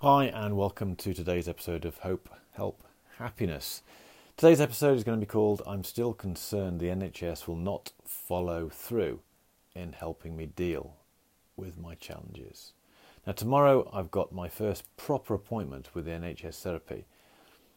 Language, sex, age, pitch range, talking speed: English, male, 40-59, 85-100 Hz, 150 wpm